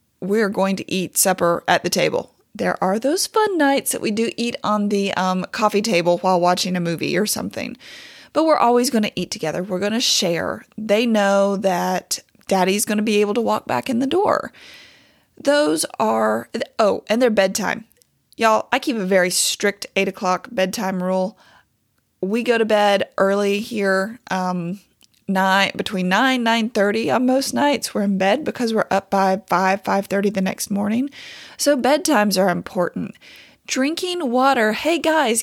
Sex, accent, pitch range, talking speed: female, American, 185-240 Hz, 180 wpm